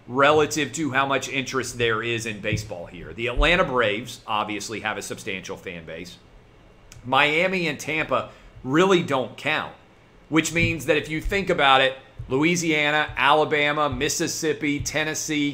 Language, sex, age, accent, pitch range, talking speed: English, male, 40-59, American, 115-155 Hz, 145 wpm